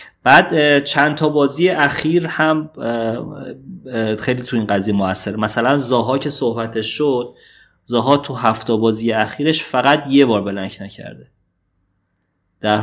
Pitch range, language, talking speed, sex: 105-135 Hz, Persian, 130 wpm, male